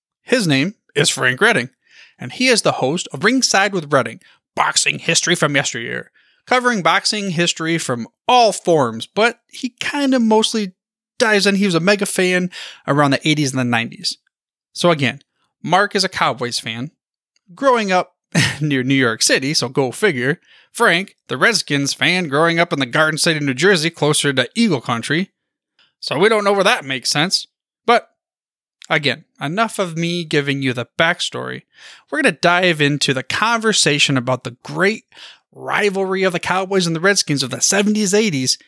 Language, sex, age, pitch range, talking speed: English, male, 30-49, 145-205 Hz, 175 wpm